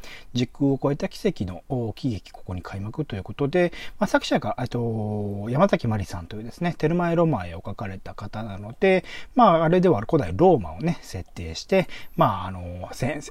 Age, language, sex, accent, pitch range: 40-59, Japanese, male, native, 105-170 Hz